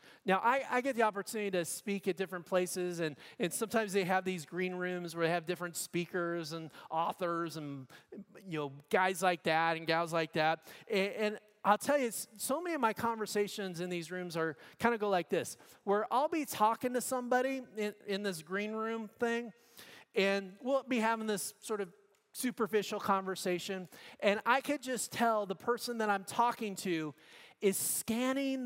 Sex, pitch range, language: male, 175-230 Hz, English